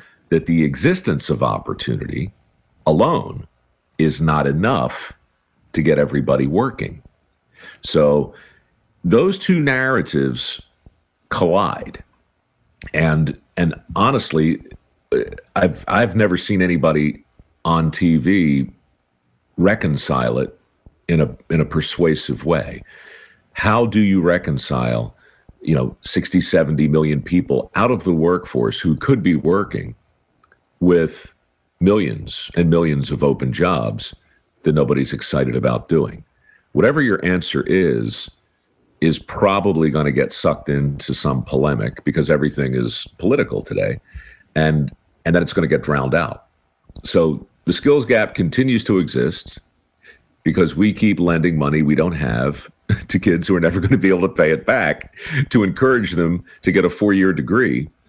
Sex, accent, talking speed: male, American, 135 wpm